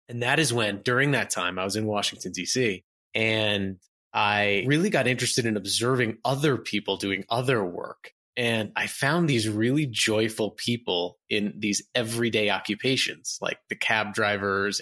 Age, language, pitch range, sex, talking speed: 20-39, English, 100-120 Hz, male, 160 wpm